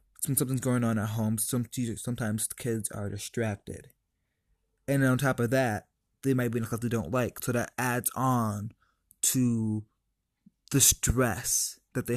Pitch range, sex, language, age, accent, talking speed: 110-140 Hz, male, English, 20-39, American, 165 wpm